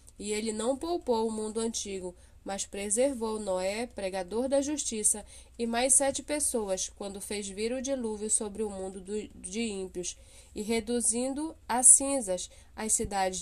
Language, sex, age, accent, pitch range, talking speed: Portuguese, female, 10-29, Brazilian, 205-250 Hz, 150 wpm